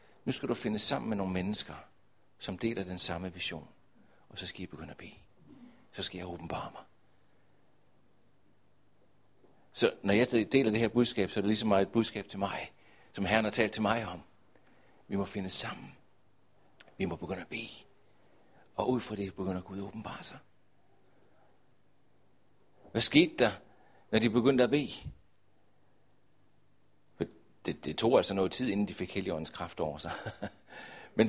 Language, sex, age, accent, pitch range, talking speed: Danish, male, 60-79, native, 100-145 Hz, 165 wpm